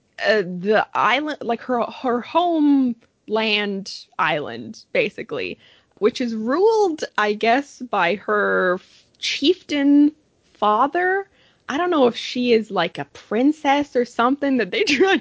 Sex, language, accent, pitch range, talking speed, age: female, English, American, 215-290 Hz, 130 wpm, 20-39